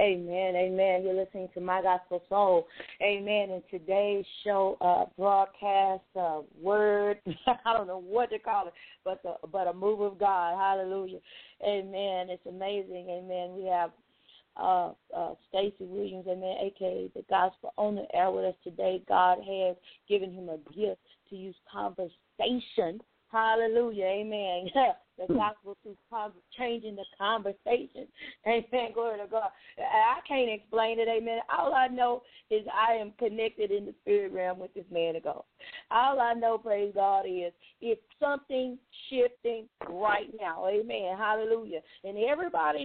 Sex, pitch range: female, 190-245 Hz